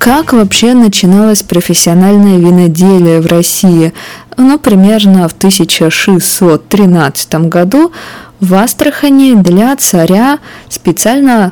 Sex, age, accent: female, 20-39, native